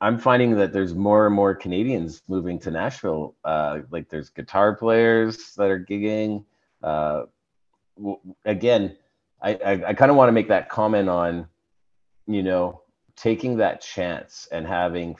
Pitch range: 85-105 Hz